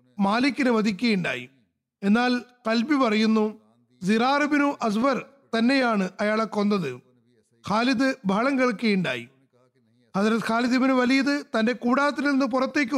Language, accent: Malayalam, native